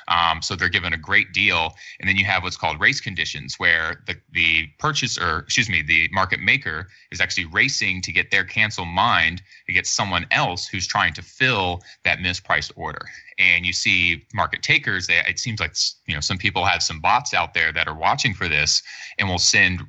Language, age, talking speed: English, 30-49, 210 wpm